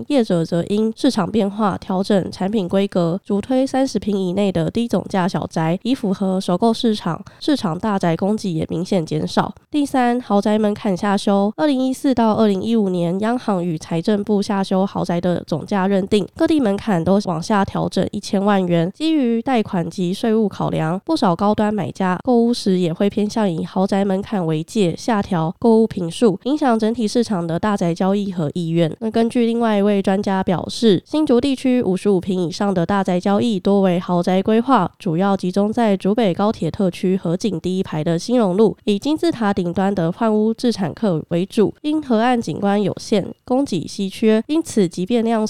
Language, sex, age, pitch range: Chinese, female, 20-39, 185-230 Hz